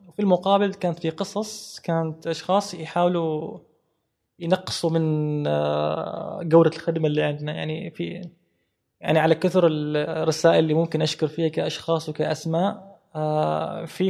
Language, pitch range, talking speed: Arabic, 150-175 Hz, 115 wpm